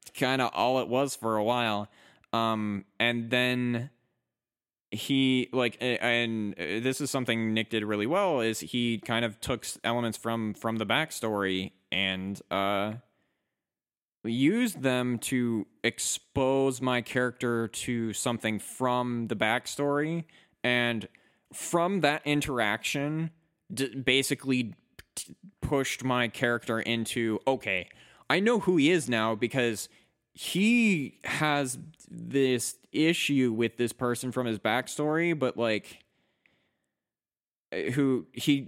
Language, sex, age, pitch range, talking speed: English, male, 20-39, 110-135 Hz, 120 wpm